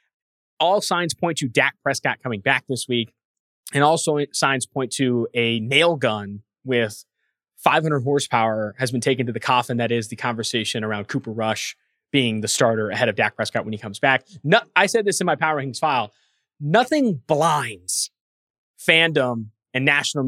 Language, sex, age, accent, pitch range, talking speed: English, male, 20-39, American, 120-160 Hz, 175 wpm